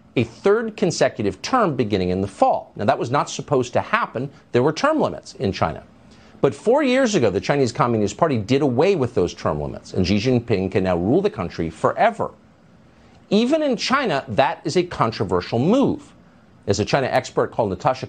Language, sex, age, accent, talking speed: English, male, 50-69, American, 190 wpm